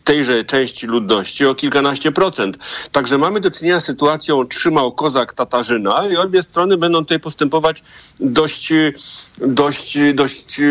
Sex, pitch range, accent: male, 125-155 Hz, native